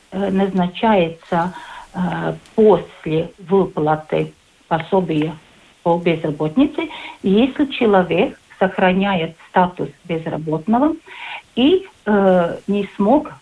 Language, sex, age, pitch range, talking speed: Russian, female, 50-69, 170-230 Hz, 70 wpm